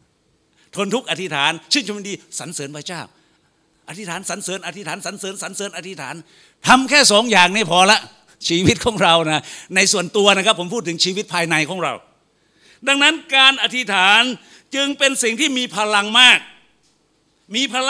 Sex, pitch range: male, 195-270 Hz